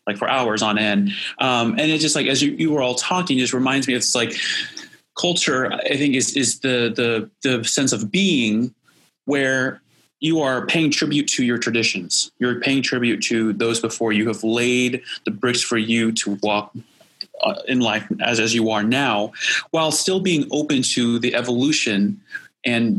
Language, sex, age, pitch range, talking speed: English, male, 30-49, 110-130 Hz, 185 wpm